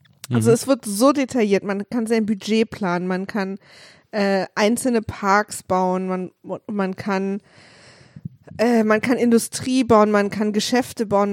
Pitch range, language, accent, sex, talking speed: 185-225 Hz, German, German, female, 150 wpm